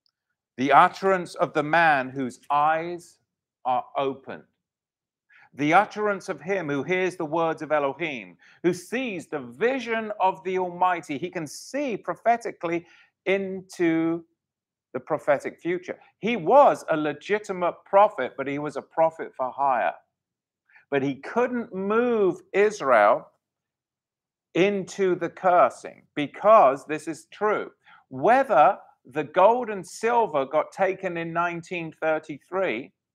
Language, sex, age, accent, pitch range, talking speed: English, male, 50-69, British, 155-220 Hz, 120 wpm